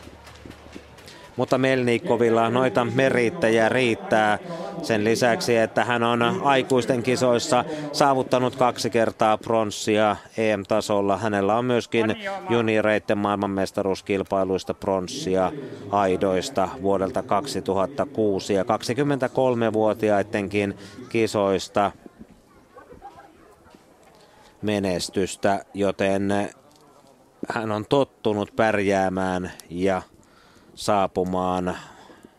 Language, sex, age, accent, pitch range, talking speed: Finnish, male, 30-49, native, 100-135 Hz, 70 wpm